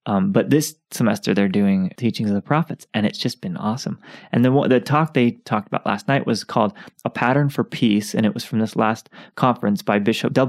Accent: American